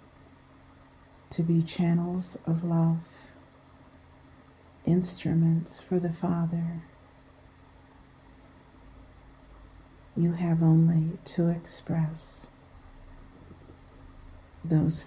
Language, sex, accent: English, female, American